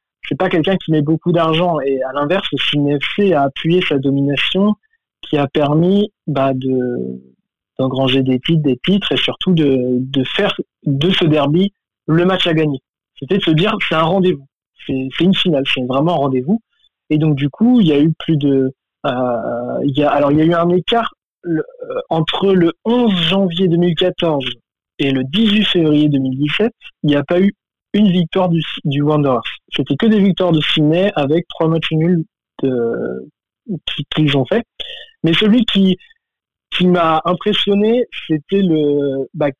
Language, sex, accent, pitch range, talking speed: French, male, French, 145-190 Hz, 175 wpm